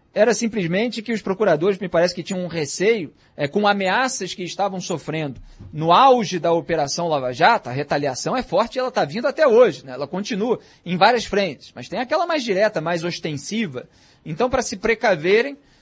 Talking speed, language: 190 wpm, Portuguese